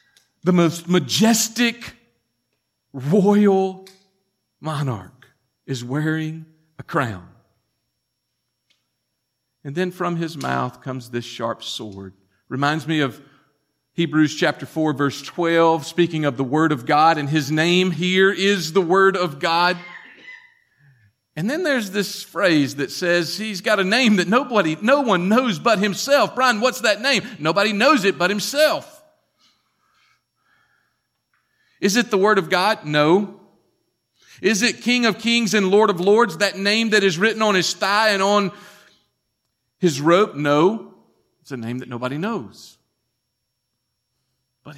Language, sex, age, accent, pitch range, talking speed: English, male, 50-69, American, 125-195 Hz, 140 wpm